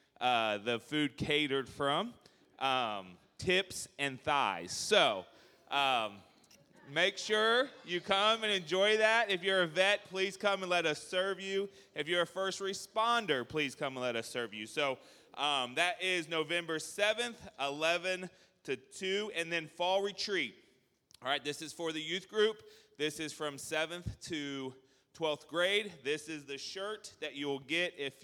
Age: 30-49